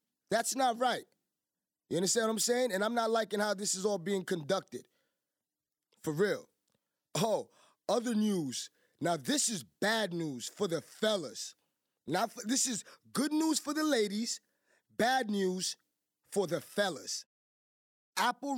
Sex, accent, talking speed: male, American, 145 wpm